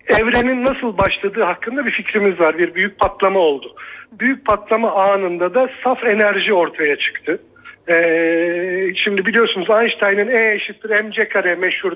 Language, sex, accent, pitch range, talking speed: Turkish, male, native, 195-250 Hz, 140 wpm